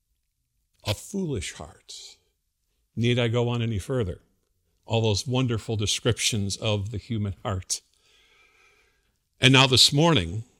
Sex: male